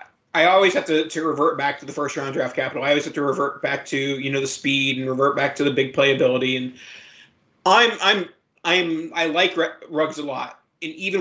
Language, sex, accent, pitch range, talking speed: English, male, American, 140-170 Hz, 225 wpm